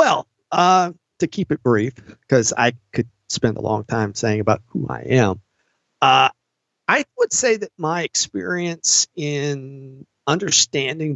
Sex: male